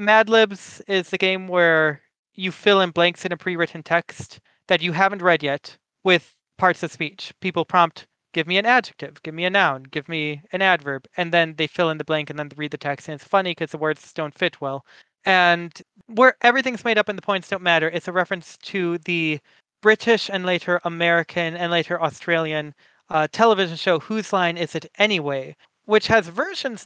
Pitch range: 155-190 Hz